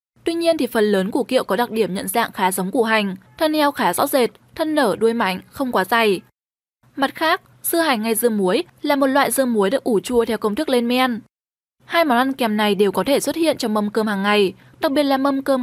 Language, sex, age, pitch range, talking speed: Vietnamese, female, 10-29, 215-290 Hz, 265 wpm